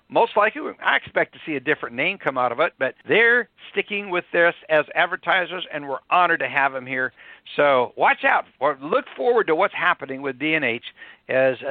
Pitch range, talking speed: 145-185 Hz, 200 wpm